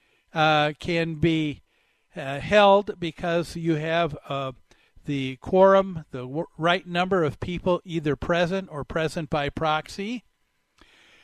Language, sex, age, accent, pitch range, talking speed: English, male, 50-69, American, 155-195 Hz, 125 wpm